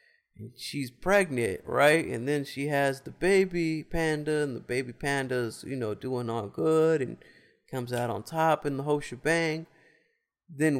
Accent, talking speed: American, 160 wpm